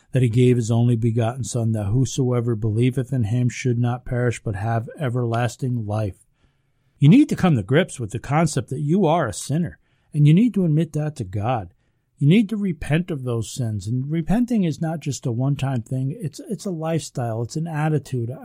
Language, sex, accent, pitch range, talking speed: English, male, American, 125-160 Hz, 205 wpm